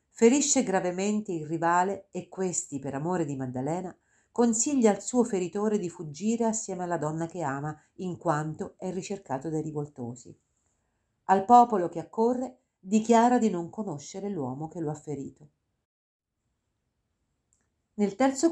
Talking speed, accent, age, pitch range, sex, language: 135 wpm, native, 50-69, 155-220 Hz, female, Italian